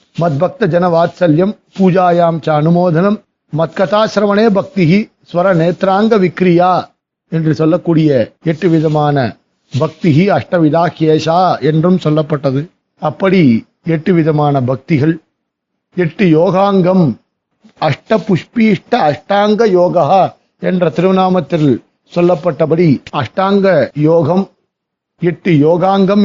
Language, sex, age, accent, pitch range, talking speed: Tamil, male, 50-69, native, 155-185 Hz, 55 wpm